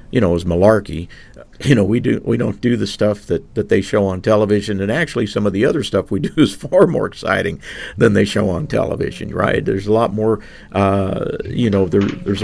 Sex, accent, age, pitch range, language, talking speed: male, American, 50-69, 95-120 Hz, English, 225 wpm